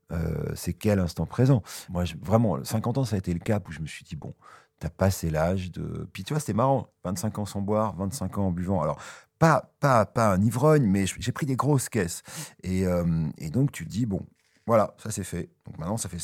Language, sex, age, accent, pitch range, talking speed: French, male, 40-59, French, 90-115 Hz, 235 wpm